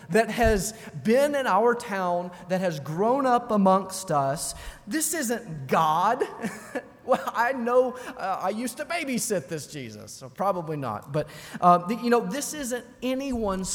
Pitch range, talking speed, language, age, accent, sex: 150-220 Hz, 155 wpm, English, 30-49, American, male